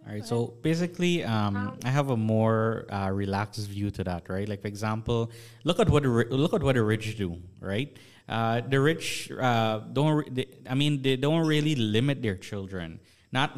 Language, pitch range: English, 105-130 Hz